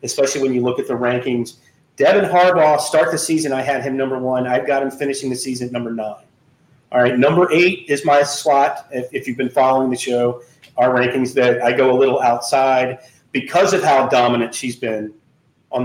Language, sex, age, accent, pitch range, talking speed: English, male, 30-49, American, 125-155 Hz, 210 wpm